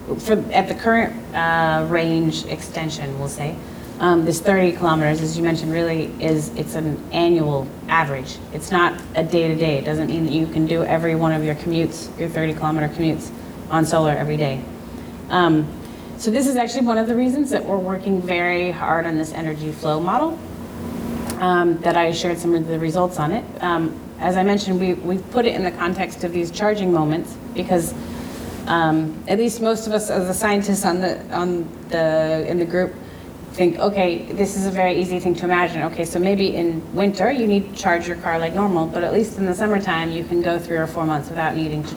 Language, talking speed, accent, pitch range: English, 205 wpm, American, 160-185 Hz